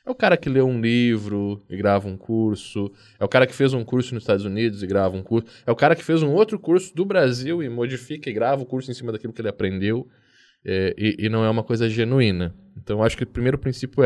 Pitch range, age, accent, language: 100-130 Hz, 10-29, Brazilian, Portuguese